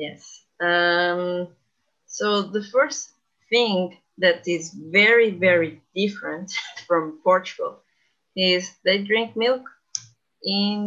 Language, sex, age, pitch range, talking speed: English, female, 30-49, 170-220 Hz, 100 wpm